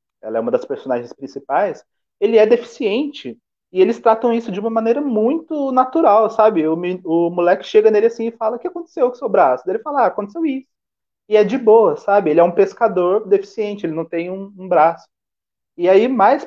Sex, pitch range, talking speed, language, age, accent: male, 175-235 Hz, 210 wpm, Portuguese, 30-49, Brazilian